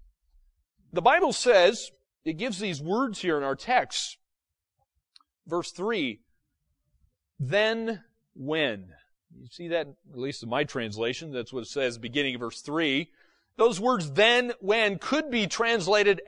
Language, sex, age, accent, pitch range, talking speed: English, male, 40-59, American, 140-215 Hz, 140 wpm